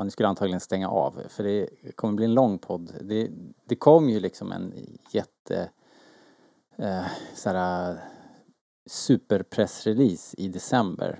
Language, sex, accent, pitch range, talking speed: Swedish, male, Norwegian, 90-105 Hz, 130 wpm